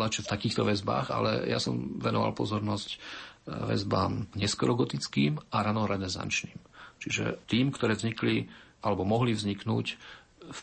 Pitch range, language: 95-110 Hz, Slovak